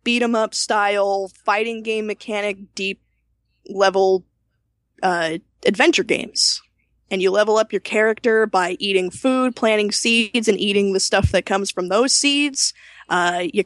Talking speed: 140 wpm